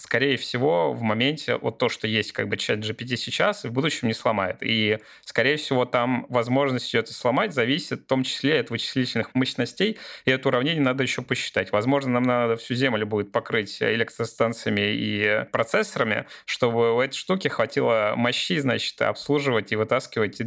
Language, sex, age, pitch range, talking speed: Russian, male, 20-39, 115-135 Hz, 170 wpm